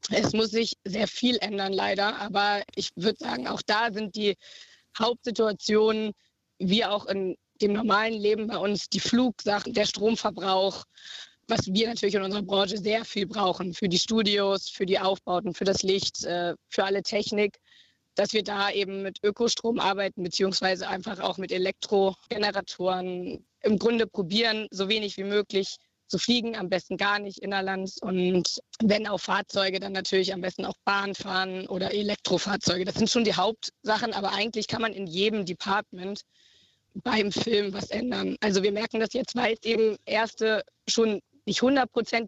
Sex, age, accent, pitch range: female, 20-39, German, 195-220 Hz